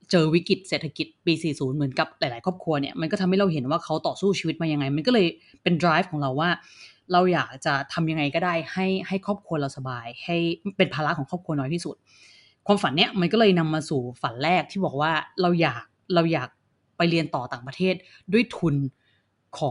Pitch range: 140-185 Hz